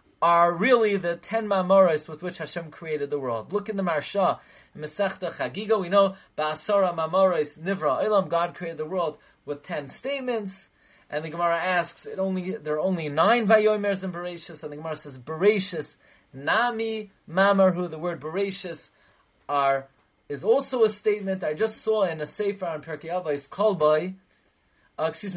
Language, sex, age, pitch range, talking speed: English, male, 30-49, 160-205 Hz, 170 wpm